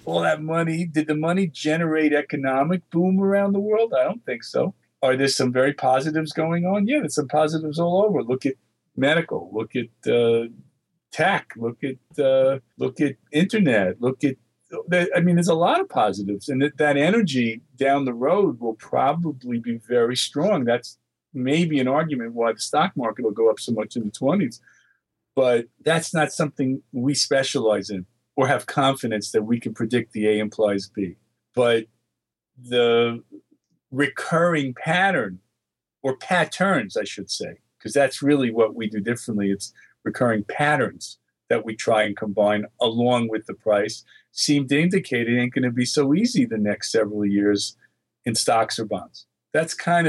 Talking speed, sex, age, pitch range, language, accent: 170 wpm, male, 50-69, 115-155 Hz, English, American